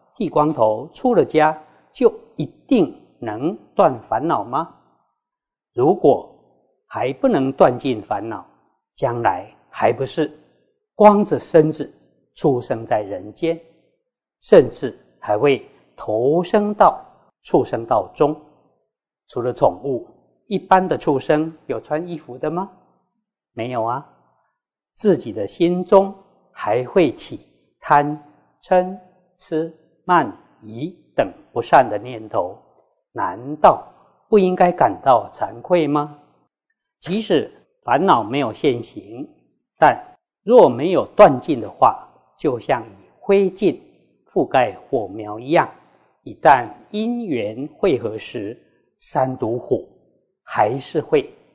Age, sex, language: 50-69, male, Chinese